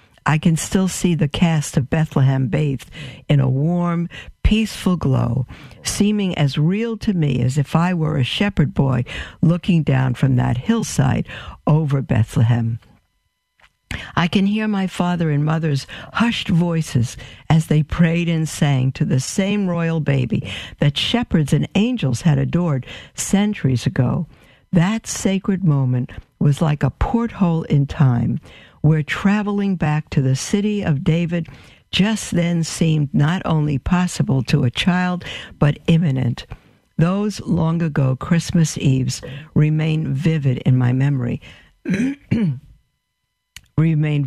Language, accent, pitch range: English, American, 135-175 Hz